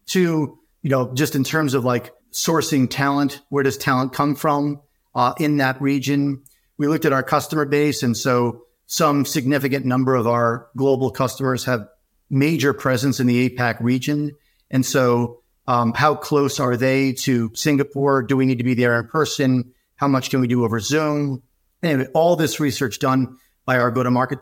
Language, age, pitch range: English, 50-69, 125-145 Hz